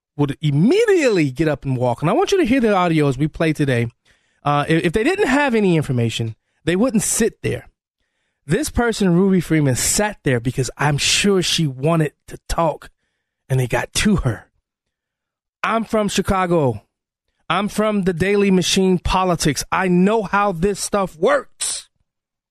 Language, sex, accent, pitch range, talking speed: English, male, American, 145-205 Hz, 170 wpm